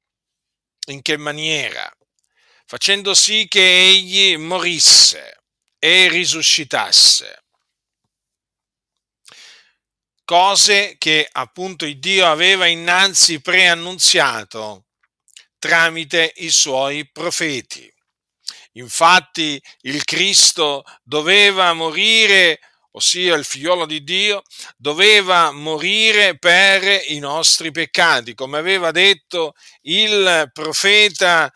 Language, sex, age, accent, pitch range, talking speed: Italian, male, 50-69, native, 150-195 Hz, 80 wpm